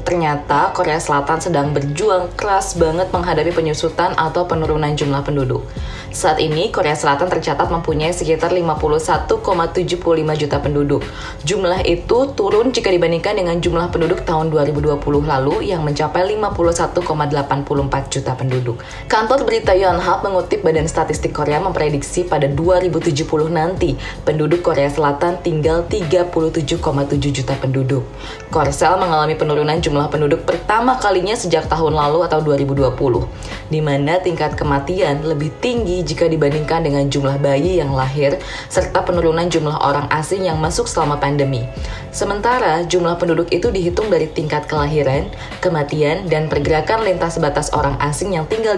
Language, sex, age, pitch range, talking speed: Indonesian, female, 20-39, 145-170 Hz, 135 wpm